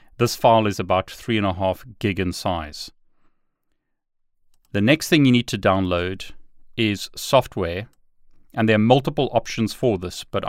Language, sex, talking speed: English, male, 160 wpm